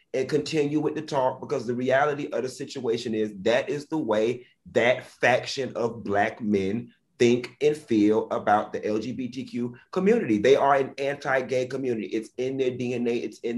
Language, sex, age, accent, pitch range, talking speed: English, male, 30-49, American, 110-140 Hz, 170 wpm